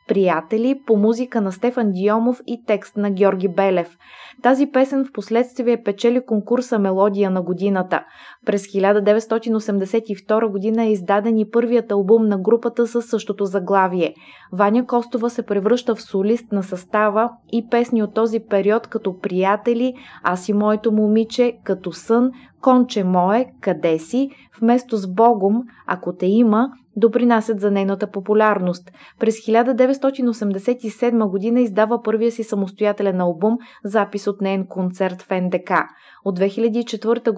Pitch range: 190-235 Hz